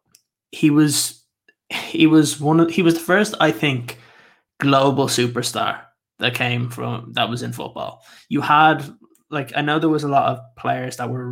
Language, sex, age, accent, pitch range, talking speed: English, male, 20-39, Irish, 125-140 Hz, 180 wpm